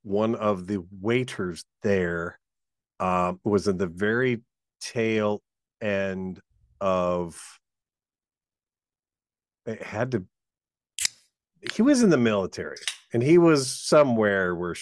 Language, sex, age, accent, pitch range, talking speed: English, male, 50-69, American, 100-130 Hz, 105 wpm